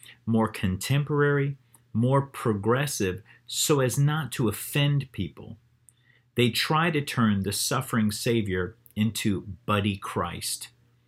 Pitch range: 105-130 Hz